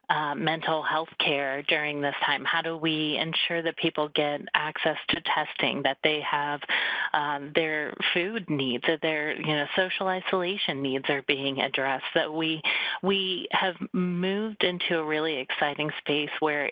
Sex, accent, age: female, American, 30-49